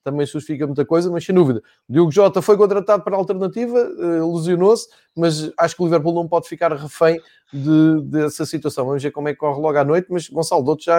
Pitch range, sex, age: 145-185 Hz, male, 20-39